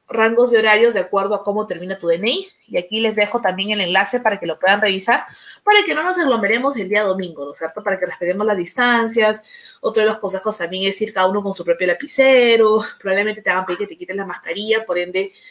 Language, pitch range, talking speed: Spanish, 195-245 Hz, 240 wpm